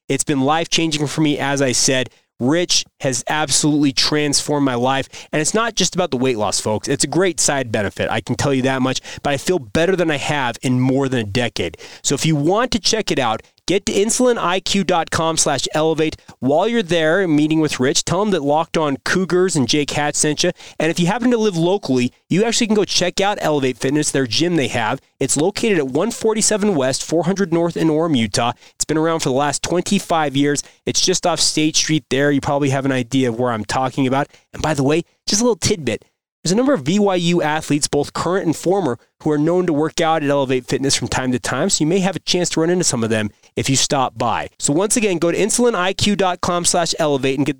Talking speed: 235 wpm